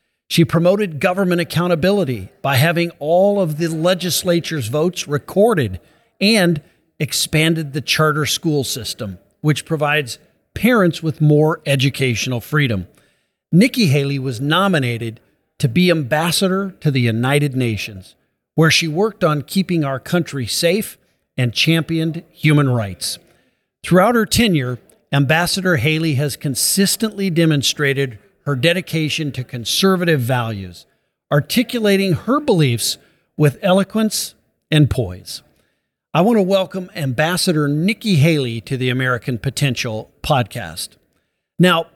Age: 50-69